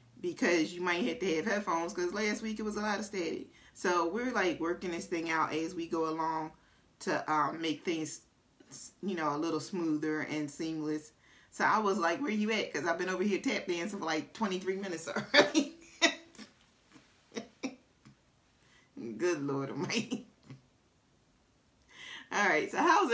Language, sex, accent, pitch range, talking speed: English, female, American, 175-245 Hz, 170 wpm